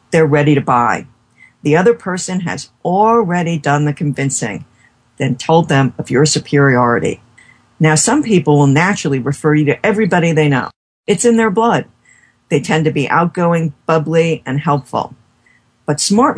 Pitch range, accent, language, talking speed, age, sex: 140-185 Hz, American, English, 160 wpm, 50-69, female